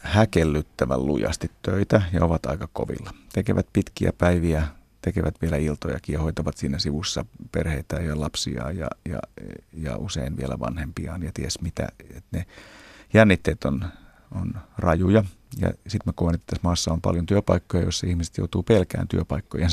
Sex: male